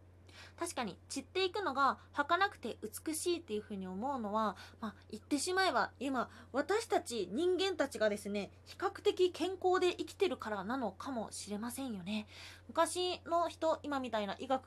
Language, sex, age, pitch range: Japanese, female, 20-39, 215-335 Hz